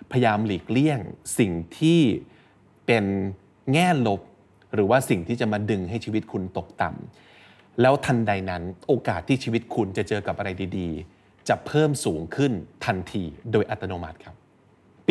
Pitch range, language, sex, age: 100-140 Hz, Thai, male, 20-39